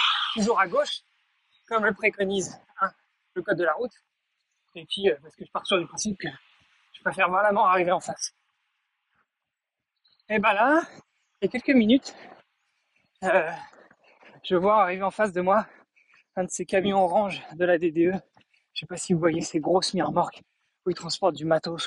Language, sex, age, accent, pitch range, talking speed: French, male, 20-39, French, 185-235 Hz, 185 wpm